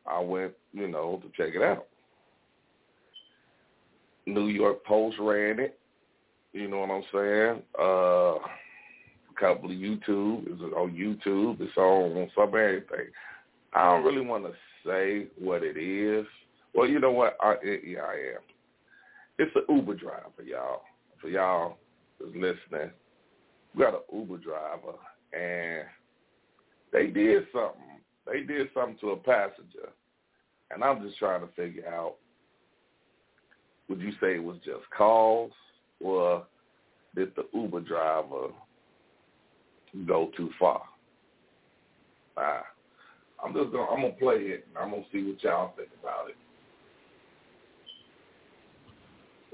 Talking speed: 140 wpm